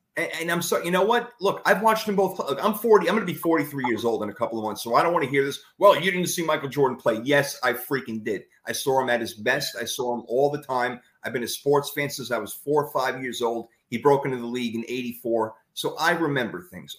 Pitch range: 120-155 Hz